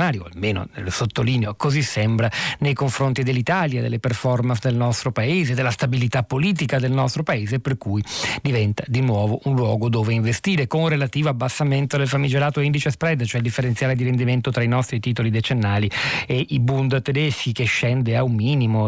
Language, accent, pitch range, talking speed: Italian, native, 115-135 Hz, 180 wpm